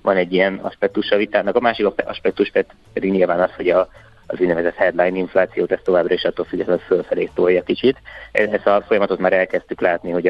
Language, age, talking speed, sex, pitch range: Hungarian, 20-39, 205 wpm, male, 90-95 Hz